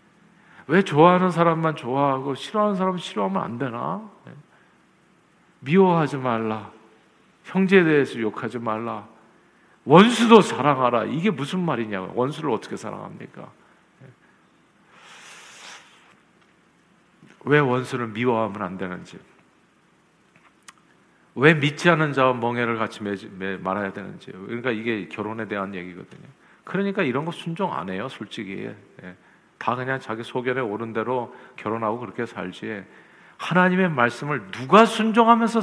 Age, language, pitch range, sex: 50-69, Korean, 110-170 Hz, male